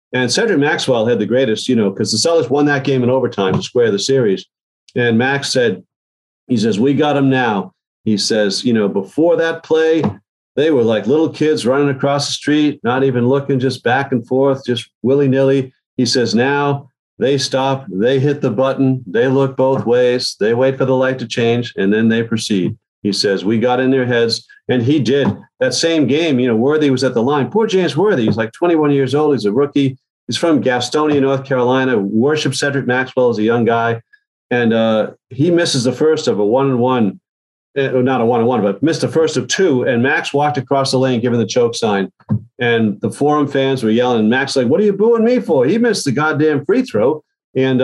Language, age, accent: English, 40-59, American